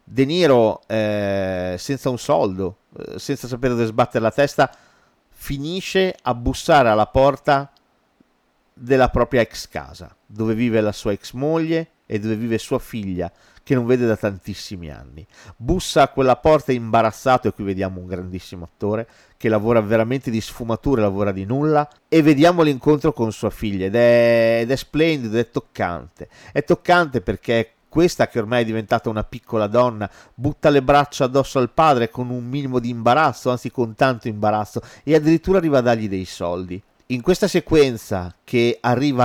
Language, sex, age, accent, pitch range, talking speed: Italian, male, 40-59, native, 110-145 Hz, 165 wpm